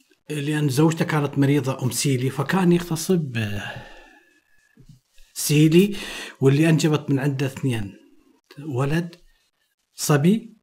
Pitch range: 135-175 Hz